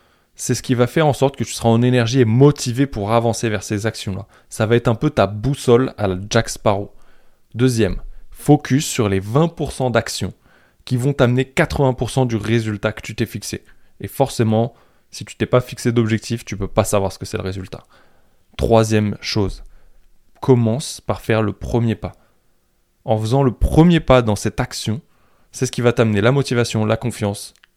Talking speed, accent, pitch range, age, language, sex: 190 wpm, French, 100-125 Hz, 20-39, French, male